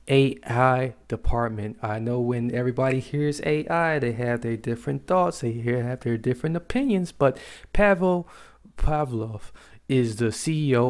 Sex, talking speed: male, 140 wpm